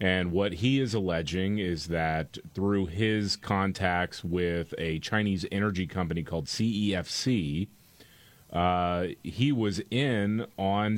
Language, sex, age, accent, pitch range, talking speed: English, male, 30-49, American, 85-110 Hz, 120 wpm